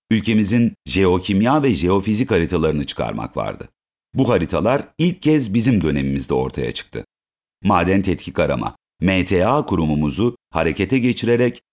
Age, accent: 50-69, native